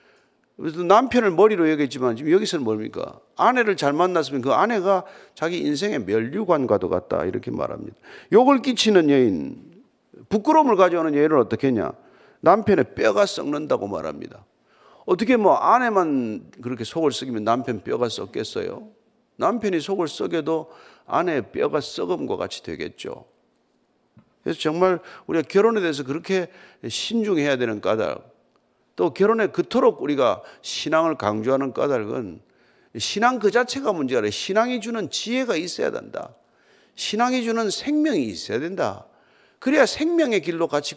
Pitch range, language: 150-245 Hz, Korean